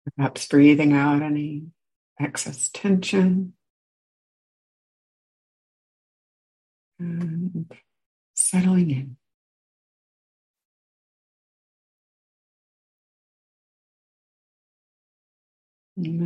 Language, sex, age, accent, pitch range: English, female, 60-79, American, 140-170 Hz